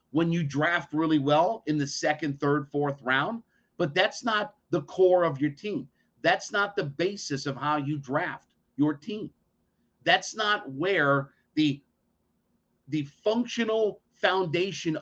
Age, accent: 50-69, American